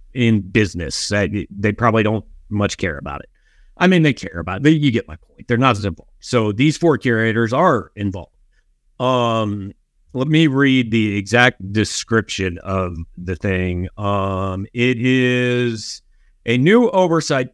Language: English